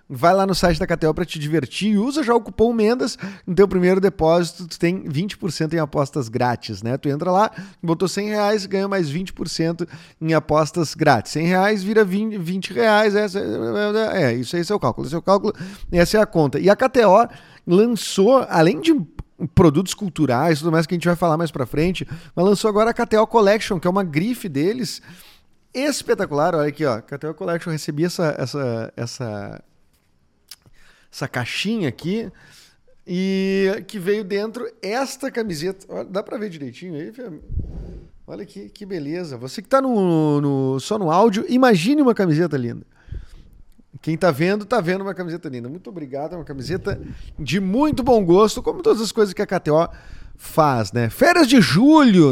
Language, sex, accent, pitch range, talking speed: Portuguese, male, Brazilian, 160-220 Hz, 180 wpm